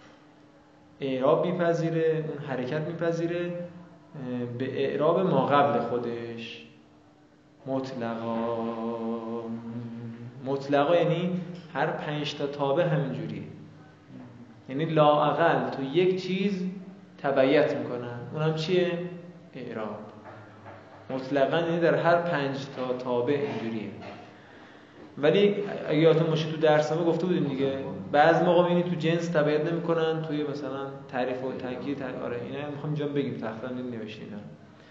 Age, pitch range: 20-39, 125-165 Hz